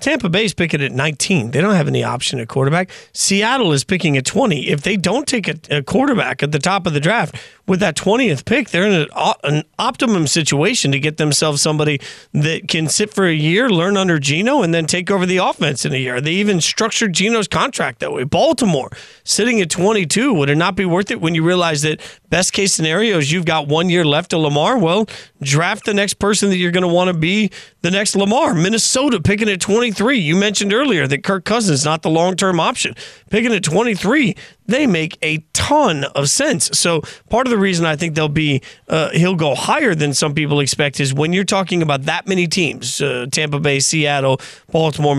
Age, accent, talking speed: 40-59, American, 215 wpm